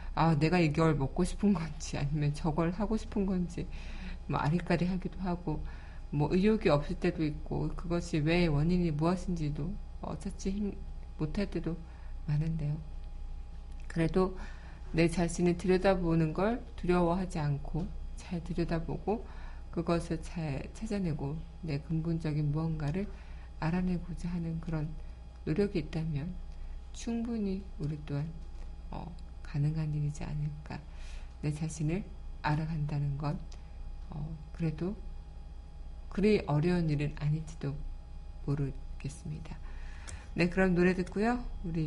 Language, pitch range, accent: Korean, 145-175 Hz, native